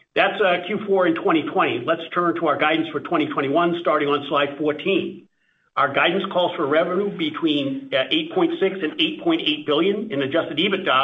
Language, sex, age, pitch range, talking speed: English, male, 50-69, 155-230 Hz, 165 wpm